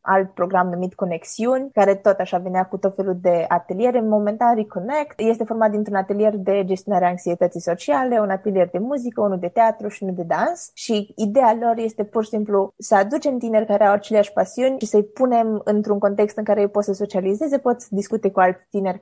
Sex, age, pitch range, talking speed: female, 20-39, 185-225 Hz, 210 wpm